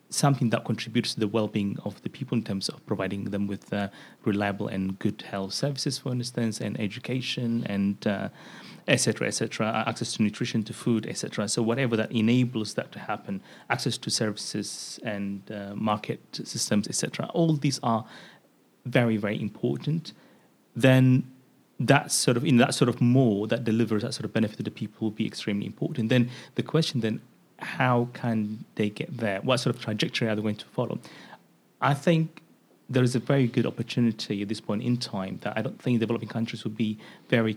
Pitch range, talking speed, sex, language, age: 105-125 Hz, 190 wpm, male, English, 30-49